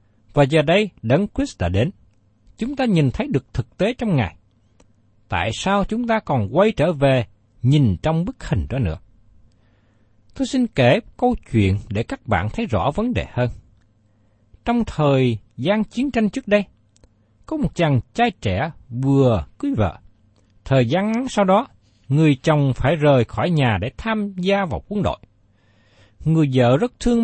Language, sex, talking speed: Vietnamese, male, 175 wpm